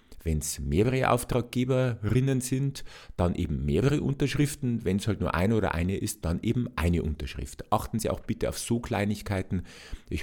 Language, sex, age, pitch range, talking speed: German, male, 50-69, 85-125 Hz, 170 wpm